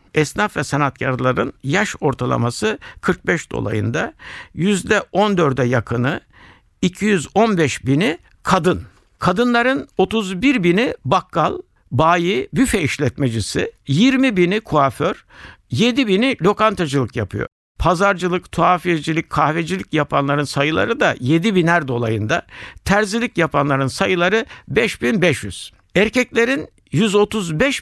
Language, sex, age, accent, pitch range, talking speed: Turkish, male, 60-79, native, 140-210 Hz, 95 wpm